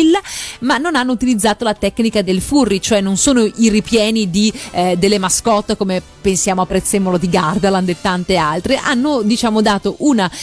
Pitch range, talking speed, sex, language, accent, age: 185-230 Hz, 175 wpm, female, Italian, native, 30-49